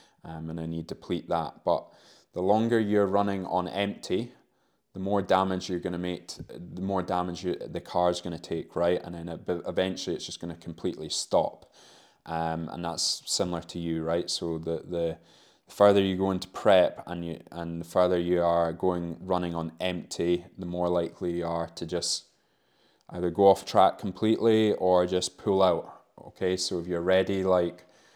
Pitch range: 85-95 Hz